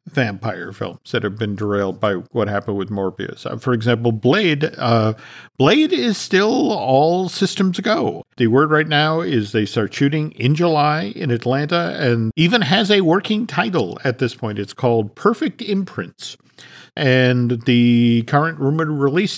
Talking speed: 160 wpm